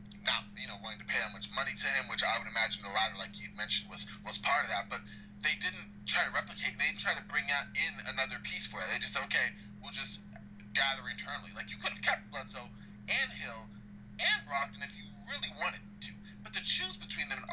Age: 20-39